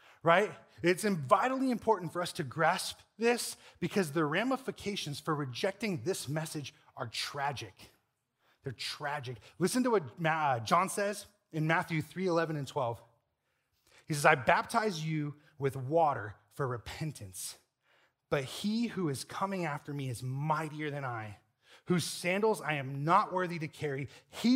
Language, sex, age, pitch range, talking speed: English, male, 30-49, 135-180 Hz, 145 wpm